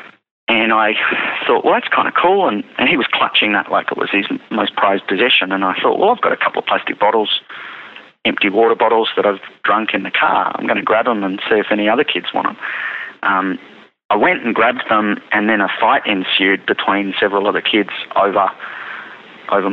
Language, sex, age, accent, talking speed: English, male, 30-49, Australian, 215 wpm